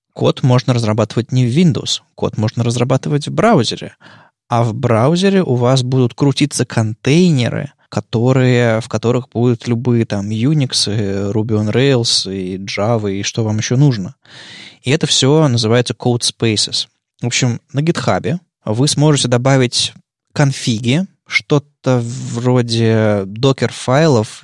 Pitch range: 115-140 Hz